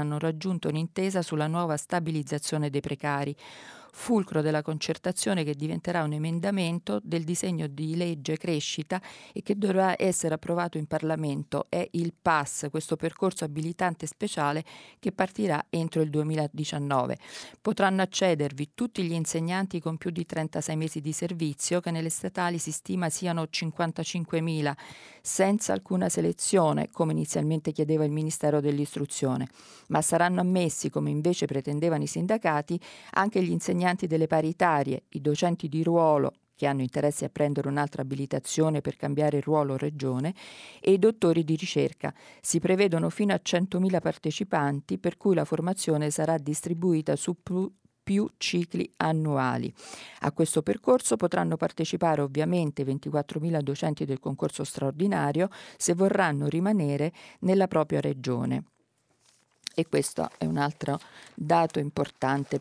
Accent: native